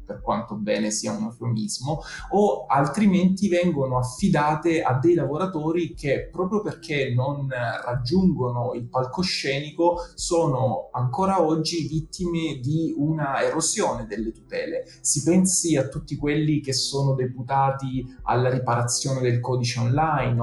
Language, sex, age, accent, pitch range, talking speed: Italian, male, 20-39, native, 125-155 Hz, 125 wpm